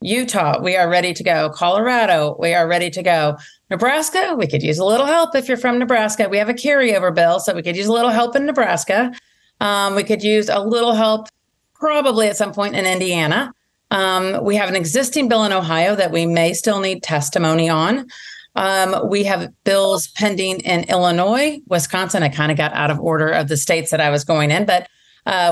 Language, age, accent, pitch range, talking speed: English, 40-59, American, 165-210 Hz, 210 wpm